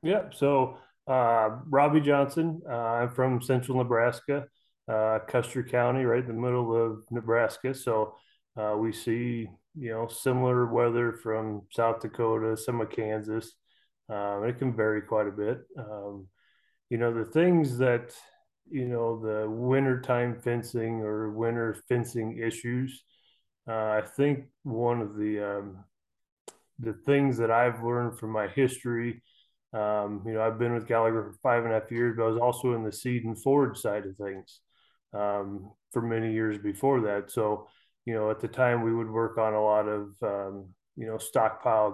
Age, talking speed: 20-39, 170 wpm